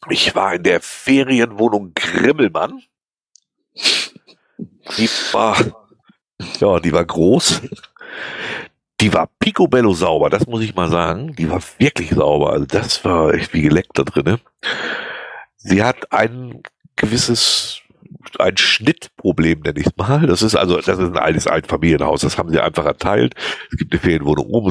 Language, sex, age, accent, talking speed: German, male, 60-79, German, 150 wpm